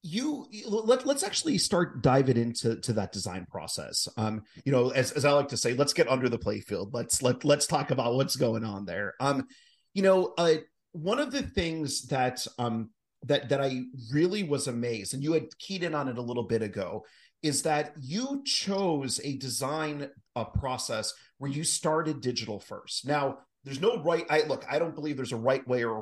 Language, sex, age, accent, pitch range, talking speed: English, male, 30-49, American, 115-155 Hz, 210 wpm